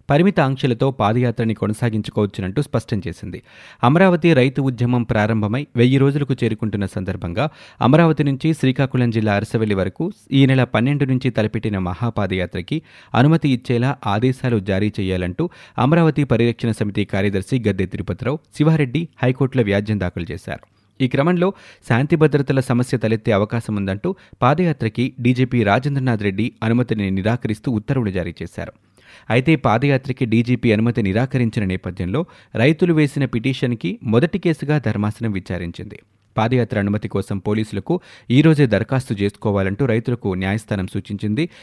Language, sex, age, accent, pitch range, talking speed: Telugu, male, 30-49, native, 105-135 Hz, 120 wpm